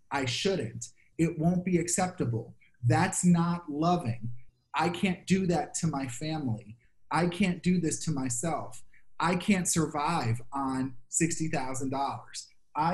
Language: English